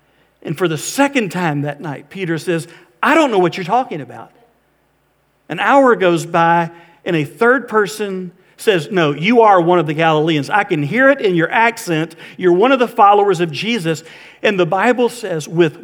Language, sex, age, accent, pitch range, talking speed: English, male, 50-69, American, 150-185 Hz, 195 wpm